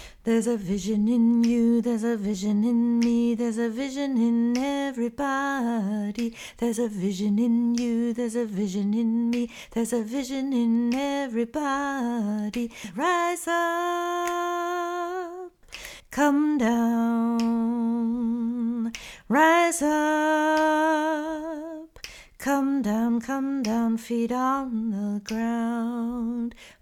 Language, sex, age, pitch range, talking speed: English, female, 40-59, 230-280 Hz, 100 wpm